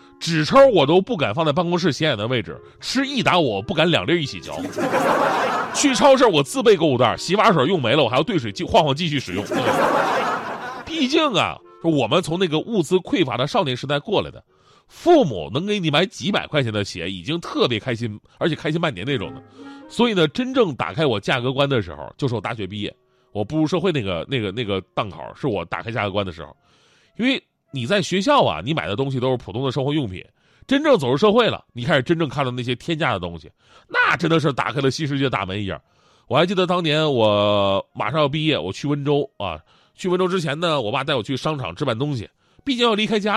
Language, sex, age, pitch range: Chinese, male, 30-49, 115-180 Hz